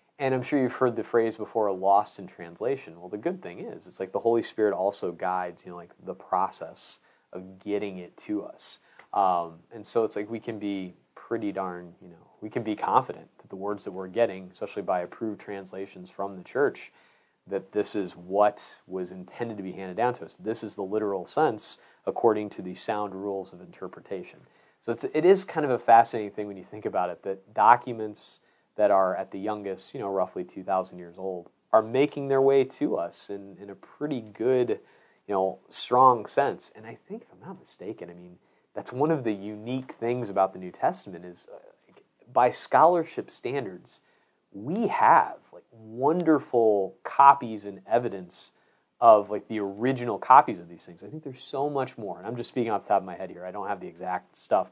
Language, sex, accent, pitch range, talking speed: English, male, American, 95-115 Hz, 210 wpm